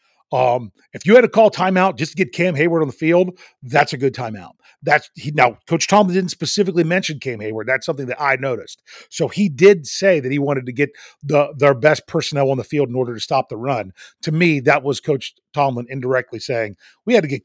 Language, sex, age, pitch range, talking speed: English, male, 40-59, 120-160 Hz, 235 wpm